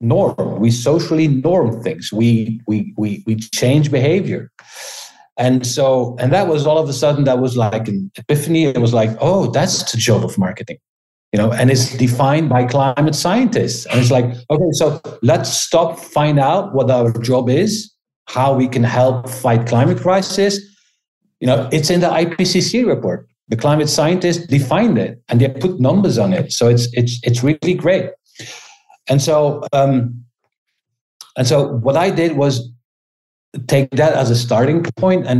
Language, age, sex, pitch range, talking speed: English, 50-69, male, 120-160 Hz, 175 wpm